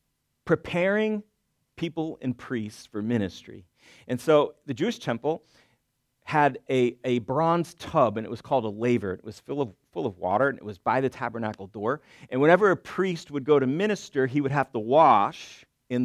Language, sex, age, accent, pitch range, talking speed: English, male, 40-59, American, 110-150 Hz, 185 wpm